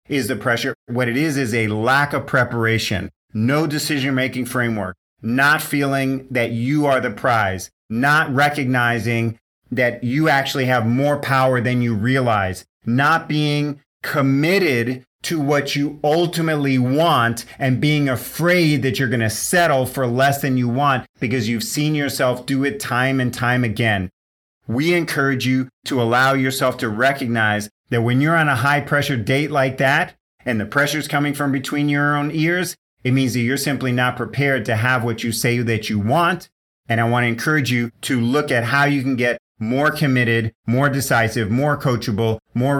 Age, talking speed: 30-49, 175 wpm